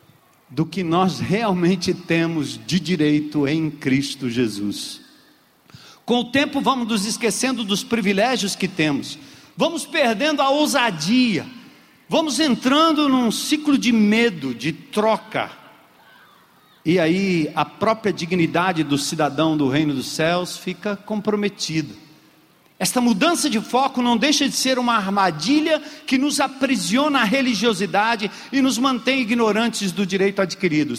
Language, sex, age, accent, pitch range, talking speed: Portuguese, male, 50-69, Brazilian, 180-250 Hz, 130 wpm